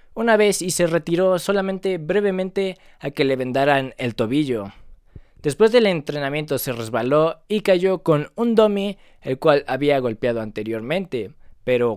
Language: Spanish